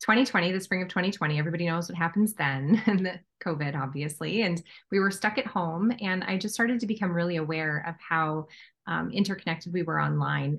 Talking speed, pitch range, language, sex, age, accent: 195 wpm, 155-190 Hz, English, female, 20-39, American